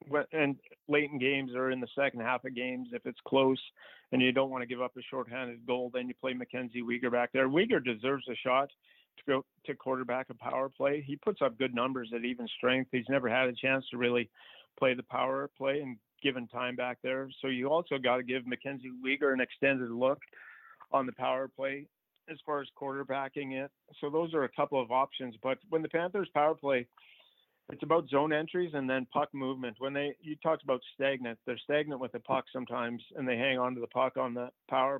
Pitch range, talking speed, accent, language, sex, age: 125-140 Hz, 220 wpm, American, English, male, 50-69